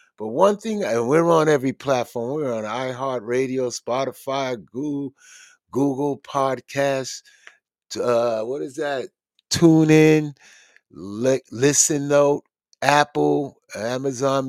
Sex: male